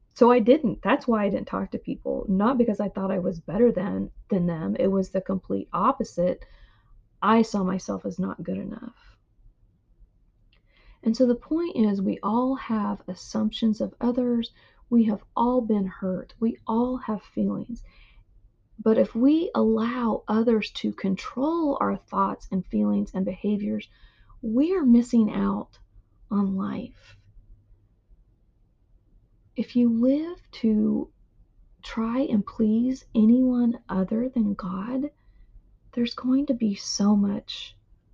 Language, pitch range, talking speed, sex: English, 185-245 Hz, 140 wpm, female